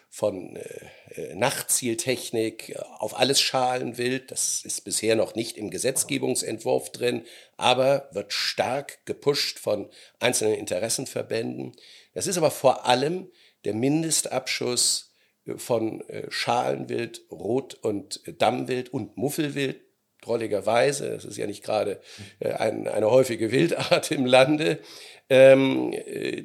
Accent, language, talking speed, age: German, German, 110 wpm, 50-69